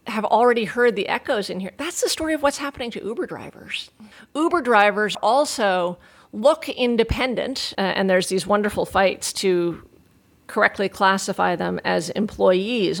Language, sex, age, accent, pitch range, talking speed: English, female, 40-59, American, 190-235 Hz, 150 wpm